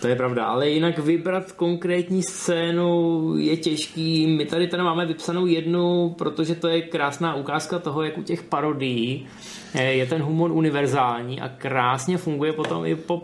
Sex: male